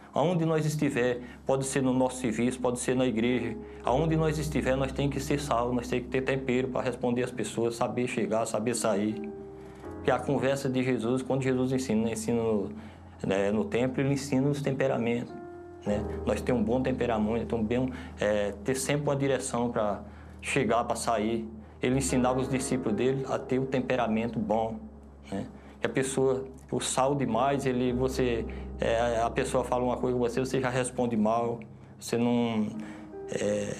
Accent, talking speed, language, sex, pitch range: Brazilian, 180 wpm, Portuguese, male, 115-135 Hz